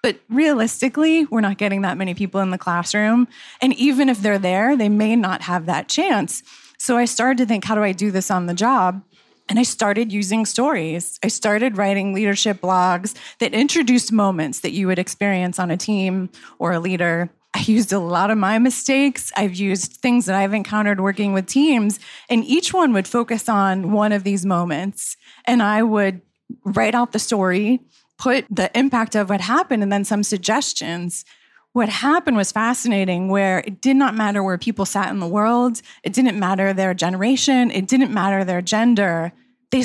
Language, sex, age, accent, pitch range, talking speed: English, female, 20-39, American, 190-240 Hz, 190 wpm